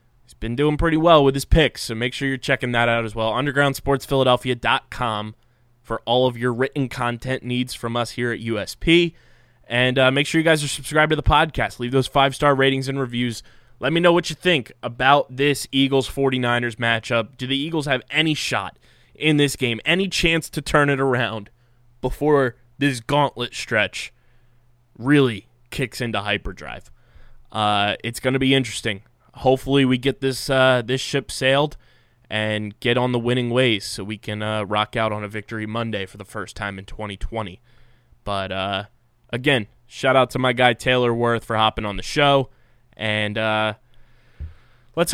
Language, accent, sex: English, American, male